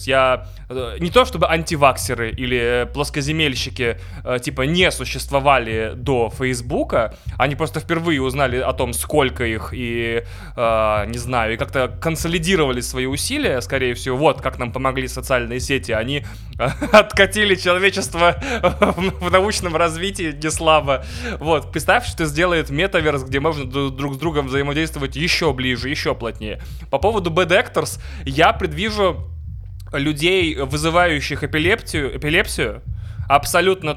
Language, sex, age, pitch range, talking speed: Russian, male, 20-39, 125-155 Hz, 125 wpm